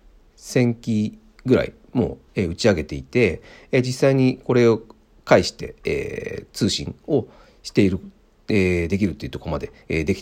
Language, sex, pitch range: Japanese, male, 85-115 Hz